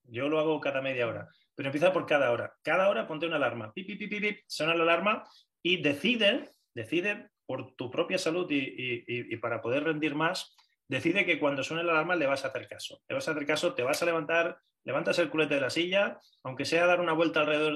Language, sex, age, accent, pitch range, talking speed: Spanish, male, 30-49, Spanish, 140-185 Hz, 230 wpm